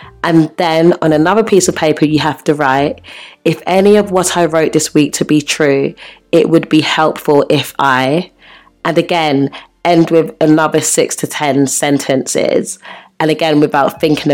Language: English